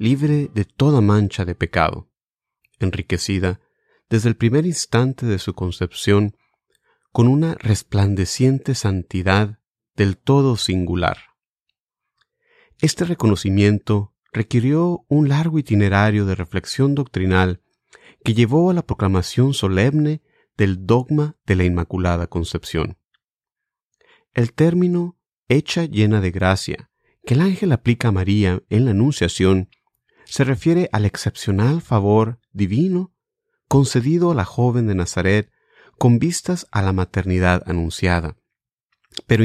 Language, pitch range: English, 95-140 Hz